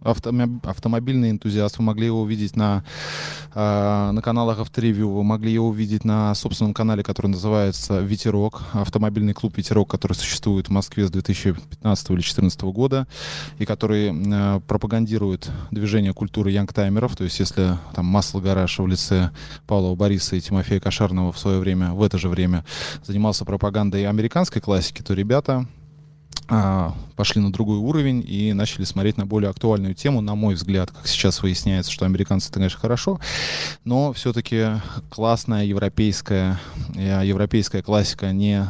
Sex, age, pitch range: male, 20-39, 95-110 Hz